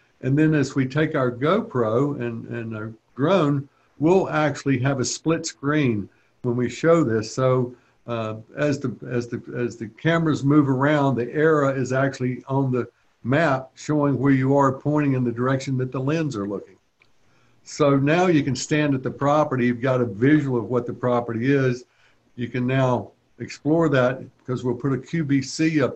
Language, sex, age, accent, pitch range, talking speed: English, male, 60-79, American, 120-145 Hz, 185 wpm